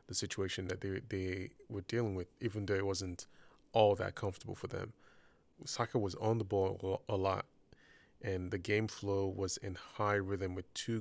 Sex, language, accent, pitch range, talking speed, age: male, English, American, 95-110 Hz, 185 wpm, 20-39